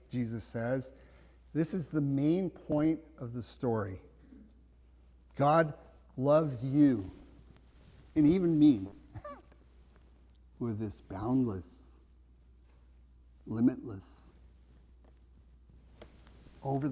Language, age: English, 50-69